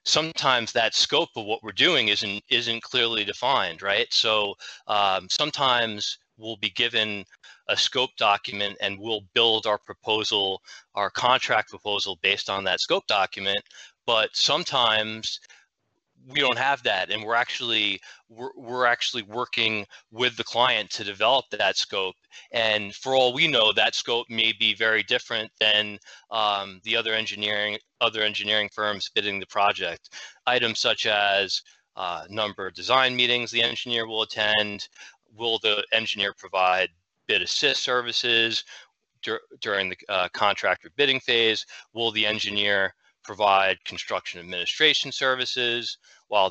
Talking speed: 140 wpm